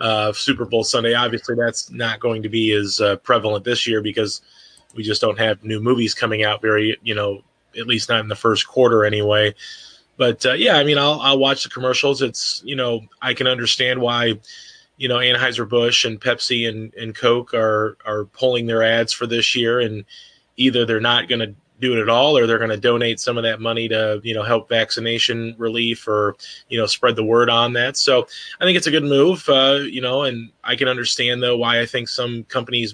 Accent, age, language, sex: American, 30-49, English, male